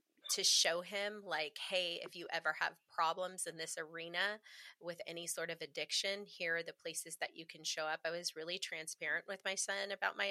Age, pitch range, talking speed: 30-49, 175-275 Hz, 210 wpm